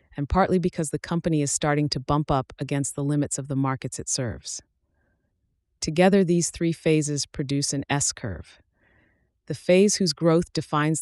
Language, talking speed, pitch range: English, 165 wpm, 130-160 Hz